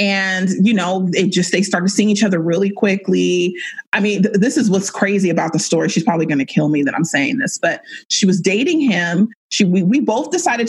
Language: English